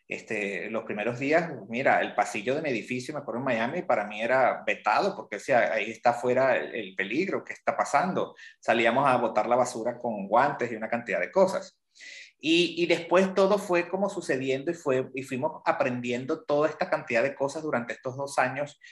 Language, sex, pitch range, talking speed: Spanish, male, 125-155 Hz, 200 wpm